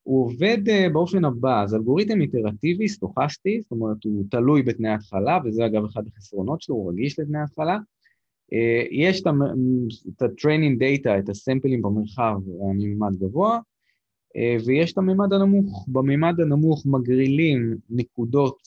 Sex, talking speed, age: male, 150 wpm, 20-39